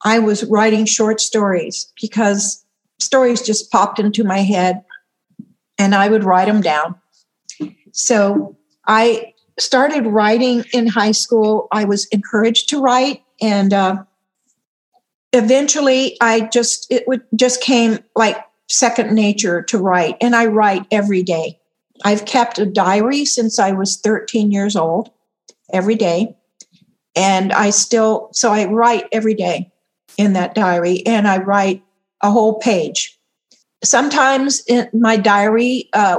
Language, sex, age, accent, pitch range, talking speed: English, female, 50-69, American, 195-235 Hz, 140 wpm